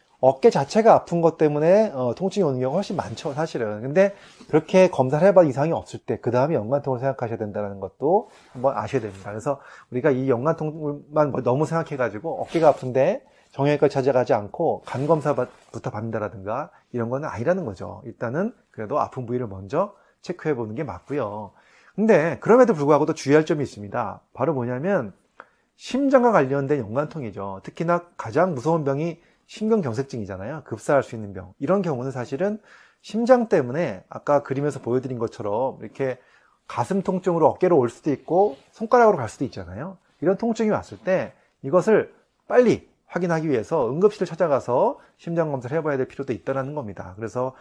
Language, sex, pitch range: Korean, male, 120-175 Hz